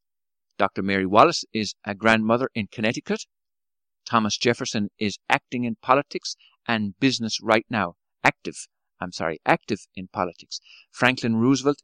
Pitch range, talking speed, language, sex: 105-135 Hz, 130 wpm, English, male